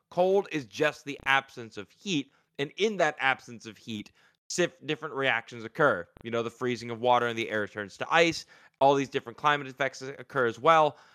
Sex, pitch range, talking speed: male, 120-155 Hz, 195 wpm